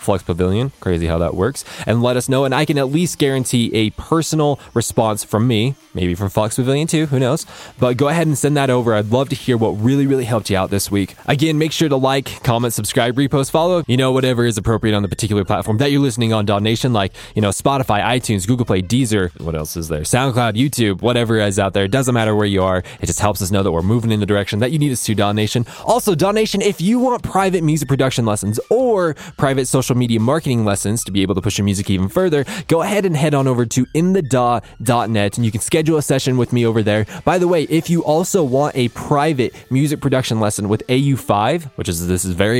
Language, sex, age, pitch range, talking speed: English, male, 20-39, 105-140 Hz, 240 wpm